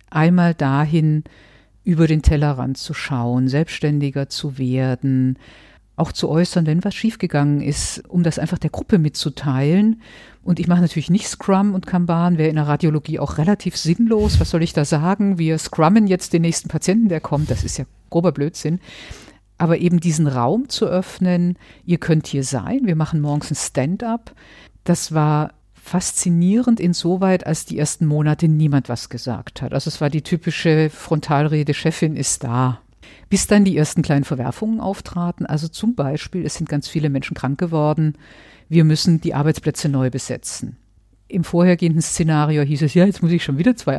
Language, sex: German, female